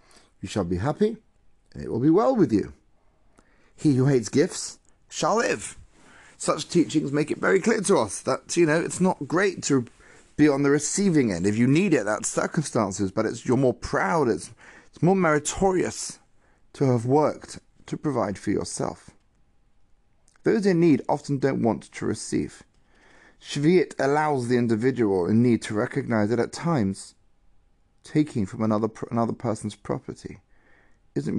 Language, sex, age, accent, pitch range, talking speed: English, male, 30-49, British, 105-150 Hz, 165 wpm